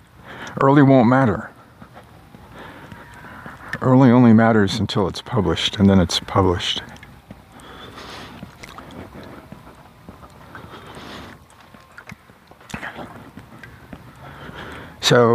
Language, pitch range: English, 100-125 Hz